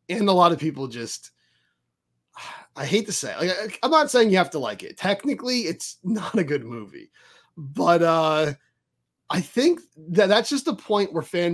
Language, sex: English, male